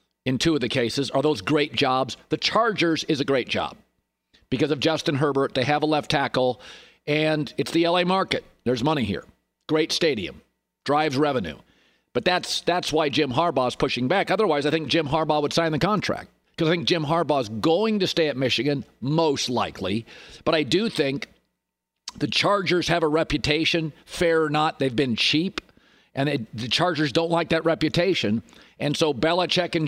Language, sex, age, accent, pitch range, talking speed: English, male, 50-69, American, 145-170 Hz, 185 wpm